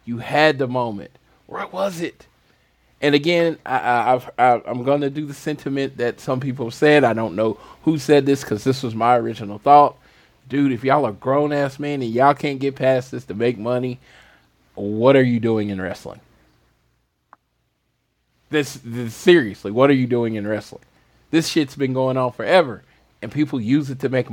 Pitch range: 115-155 Hz